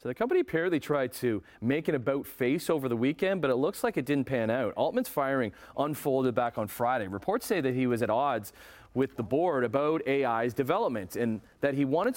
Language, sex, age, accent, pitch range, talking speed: English, male, 40-59, American, 105-135 Hz, 215 wpm